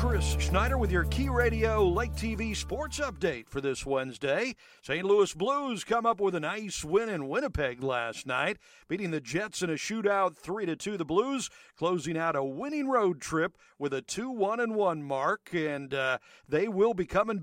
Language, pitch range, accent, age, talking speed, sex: English, 135-190 Hz, American, 50-69, 180 wpm, male